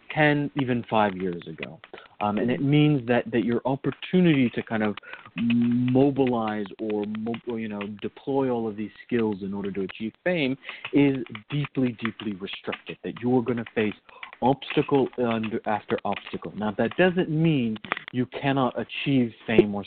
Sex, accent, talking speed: male, American, 165 wpm